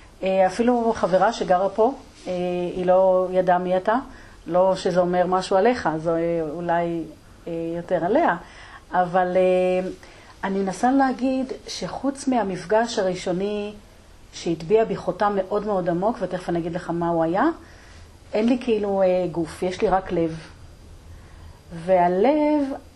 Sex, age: female, 40-59